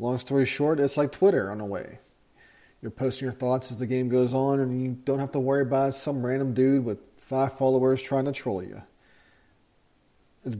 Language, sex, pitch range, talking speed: English, male, 130-155 Hz, 205 wpm